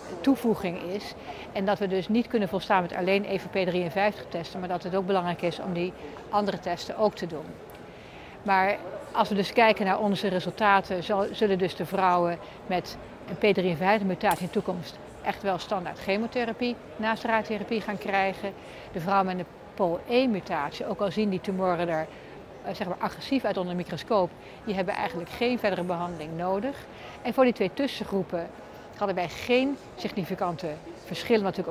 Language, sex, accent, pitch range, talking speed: Dutch, female, Dutch, 180-210 Hz, 175 wpm